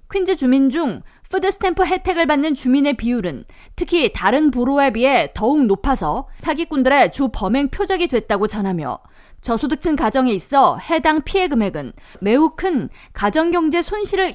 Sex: female